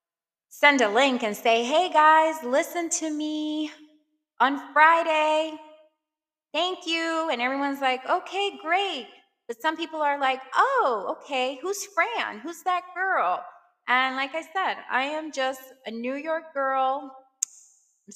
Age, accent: 20-39, American